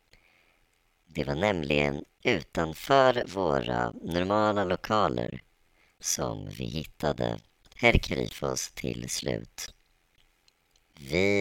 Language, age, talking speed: Swedish, 30-49, 80 wpm